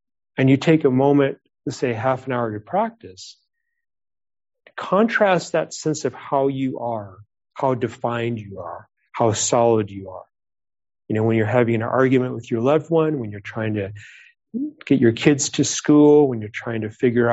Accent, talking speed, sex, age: American, 185 wpm, male, 40-59